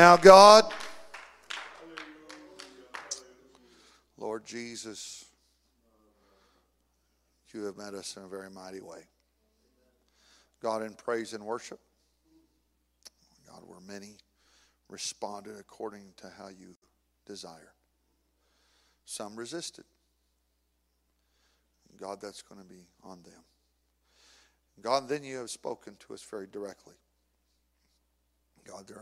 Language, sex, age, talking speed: English, male, 50-69, 95 wpm